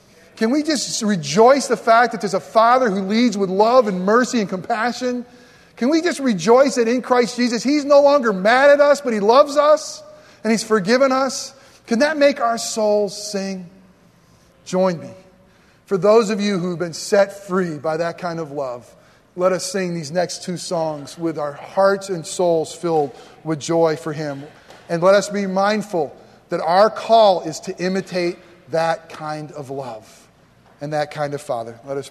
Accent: American